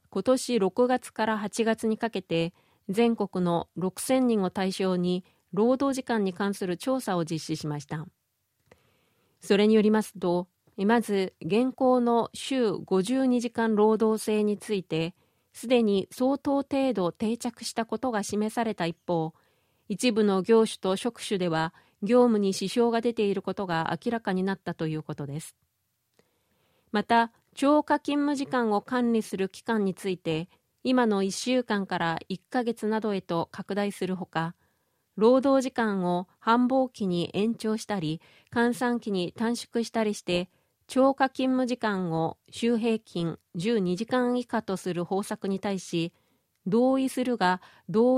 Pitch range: 180-240 Hz